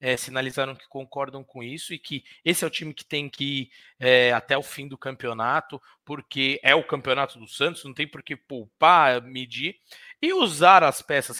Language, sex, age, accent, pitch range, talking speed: Portuguese, male, 20-39, Brazilian, 120-150 Hz, 200 wpm